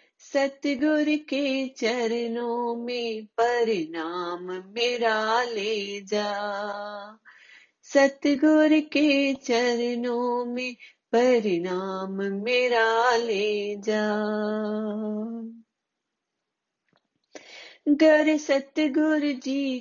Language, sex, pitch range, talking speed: Hindi, female, 240-310 Hz, 60 wpm